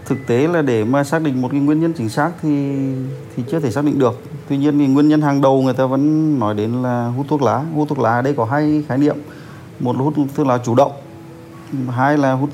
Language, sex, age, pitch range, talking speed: Vietnamese, male, 20-39, 125-150 Hz, 260 wpm